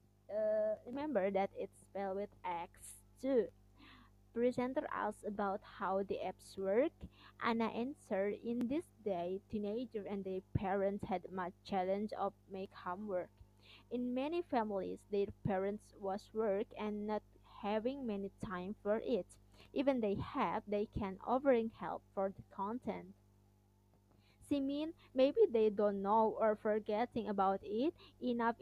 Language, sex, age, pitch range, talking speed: English, female, 20-39, 195-235 Hz, 135 wpm